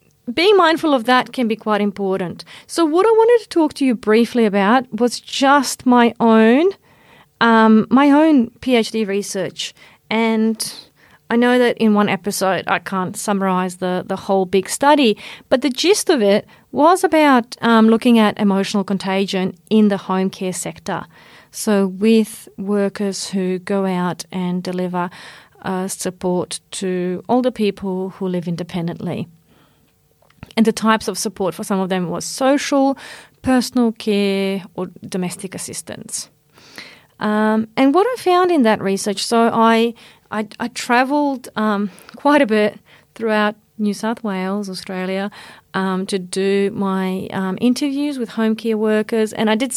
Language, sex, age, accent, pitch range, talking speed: English, female, 40-59, Australian, 190-240 Hz, 150 wpm